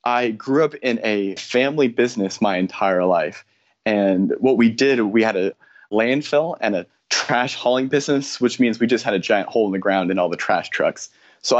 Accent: American